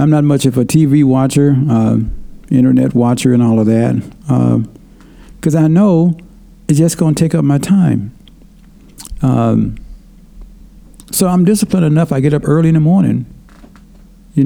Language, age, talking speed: English, 60-79, 160 wpm